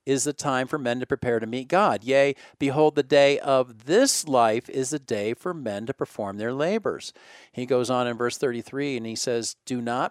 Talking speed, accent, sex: 220 wpm, American, male